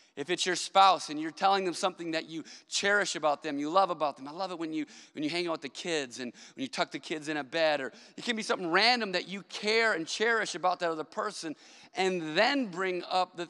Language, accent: English, American